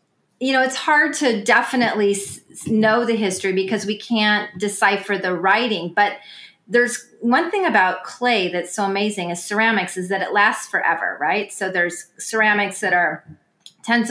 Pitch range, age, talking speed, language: 190-235 Hz, 30-49, 160 wpm, English